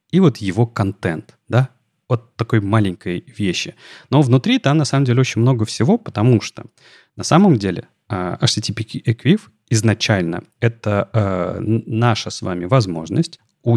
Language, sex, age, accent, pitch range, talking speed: Russian, male, 30-49, native, 100-125 Hz, 150 wpm